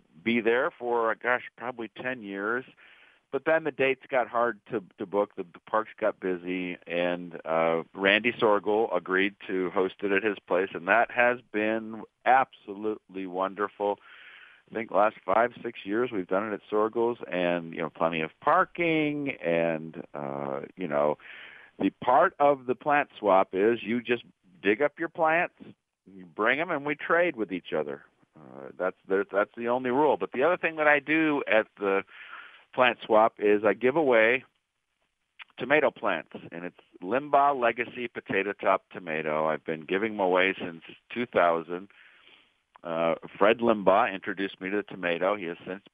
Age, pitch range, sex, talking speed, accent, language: 50-69, 90-125 Hz, male, 170 wpm, American, English